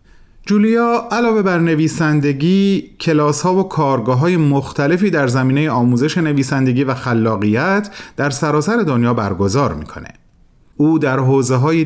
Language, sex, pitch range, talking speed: Persian, male, 110-160 Hz, 125 wpm